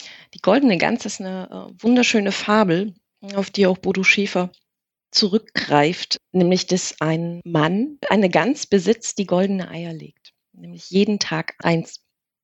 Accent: German